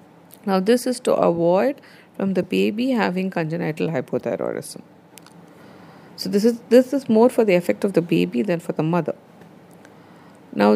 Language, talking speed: English, 155 wpm